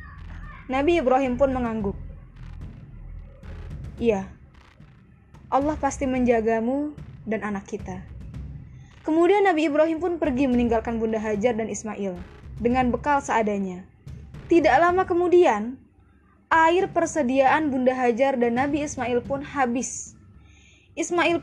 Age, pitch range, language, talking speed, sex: 20-39, 220-310 Hz, Indonesian, 105 wpm, female